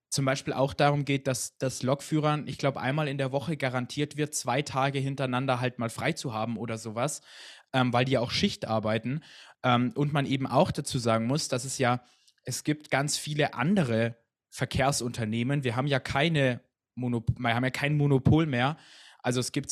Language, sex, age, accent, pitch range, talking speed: German, male, 20-39, German, 115-140 Hz, 195 wpm